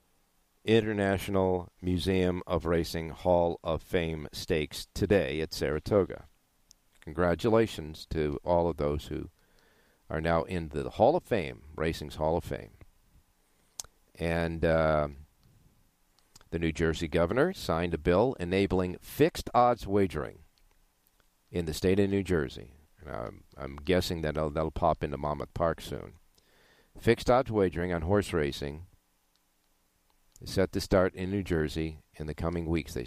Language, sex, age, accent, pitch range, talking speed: English, male, 50-69, American, 75-95 Hz, 135 wpm